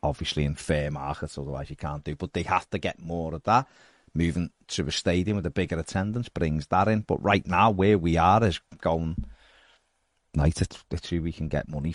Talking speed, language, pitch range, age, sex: 210 wpm, English, 75-95 Hz, 30-49, male